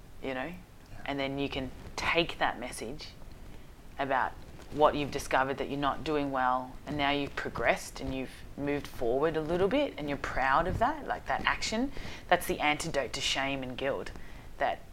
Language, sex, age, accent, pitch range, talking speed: English, female, 30-49, Australian, 125-145 Hz, 180 wpm